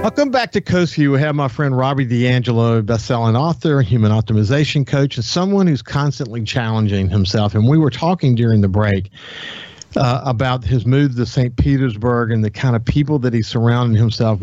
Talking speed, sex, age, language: 185 wpm, male, 50-69, English